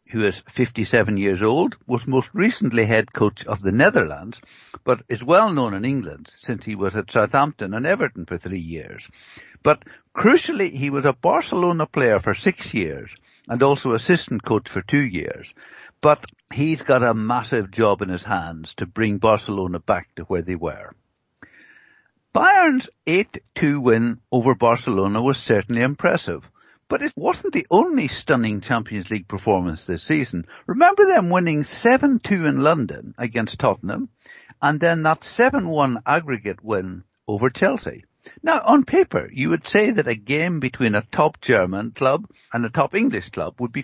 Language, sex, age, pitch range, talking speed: English, male, 60-79, 110-165 Hz, 165 wpm